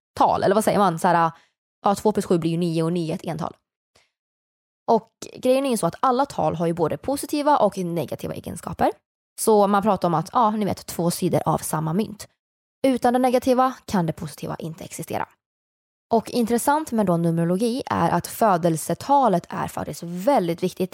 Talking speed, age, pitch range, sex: 190 wpm, 20-39, 170-230 Hz, female